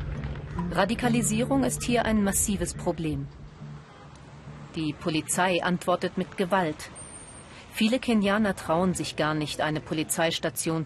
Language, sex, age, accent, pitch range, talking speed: German, female, 40-59, German, 155-195 Hz, 105 wpm